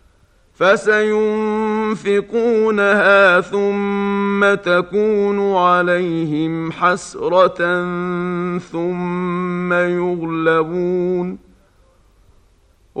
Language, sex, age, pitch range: Arabic, male, 50-69, 175-200 Hz